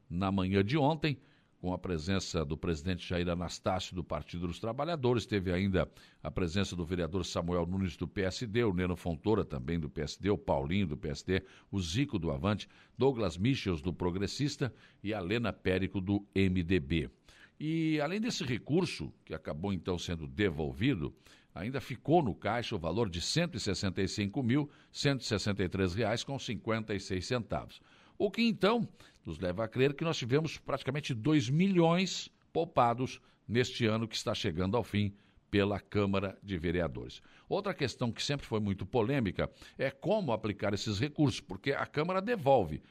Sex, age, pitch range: male, 60-79, 95-135 Hz